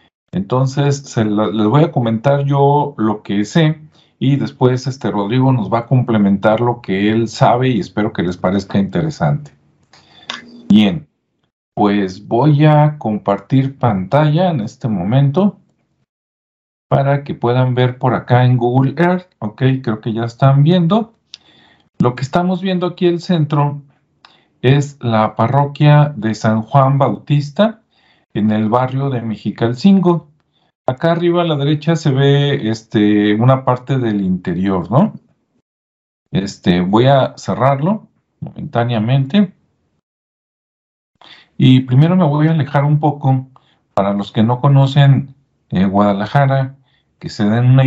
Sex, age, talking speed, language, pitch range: male, 50-69, 140 wpm, Spanish, 110-150 Hz